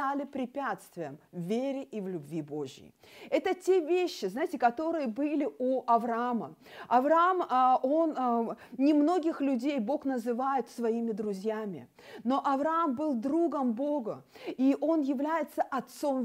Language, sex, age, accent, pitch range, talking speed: Russian, female, 40-59, native, 220-295 Hz, 125 wpm